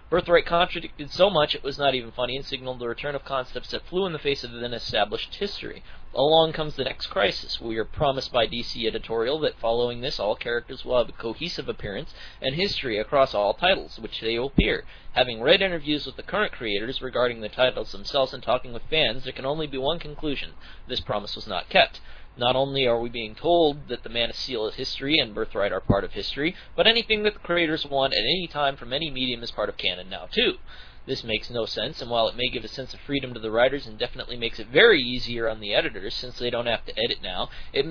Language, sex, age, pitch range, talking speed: English, male, 30-49, 115-155 Hz, 235 wpm